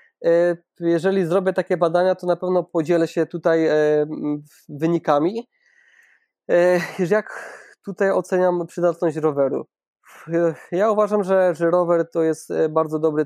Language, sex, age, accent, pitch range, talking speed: Polish, male, 20-39, native, 155-185 Hz, 115 wpm